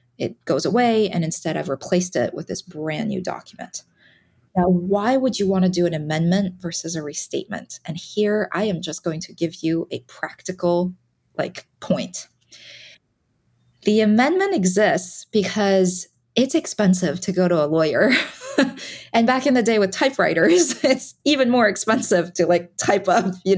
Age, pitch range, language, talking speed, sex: 20-39, 175-220 Hz, English, 165 wpm, female